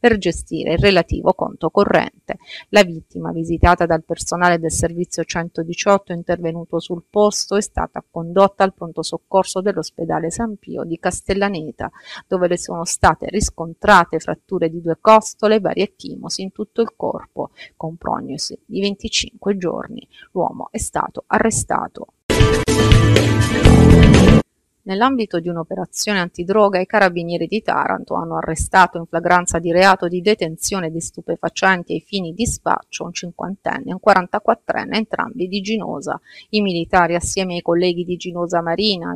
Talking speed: 140 wpm